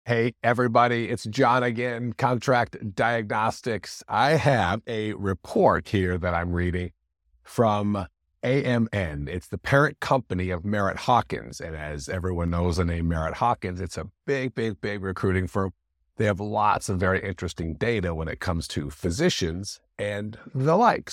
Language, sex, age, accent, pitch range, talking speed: English, male, 50-69, American, 90-125 Hz, 155 wpm